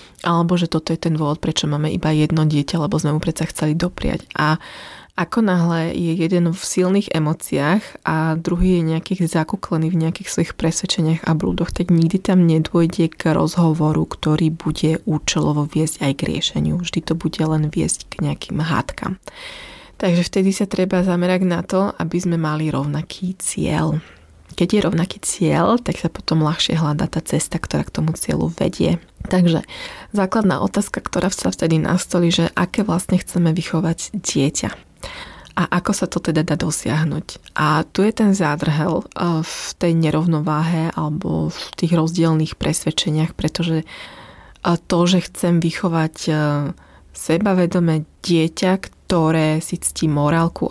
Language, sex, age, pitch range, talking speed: Slovak, female, 20-39, 155-180 Hz, 155 wpm